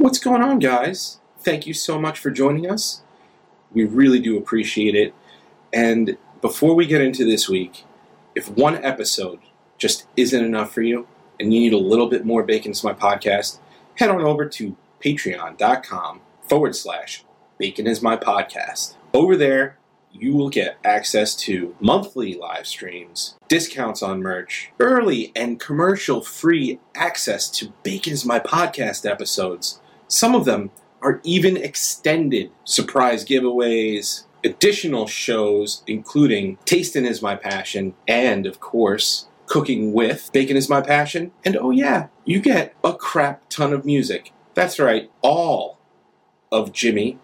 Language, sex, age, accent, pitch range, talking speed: English, male, 30-49, American, 110-155 Hz, 145 wpm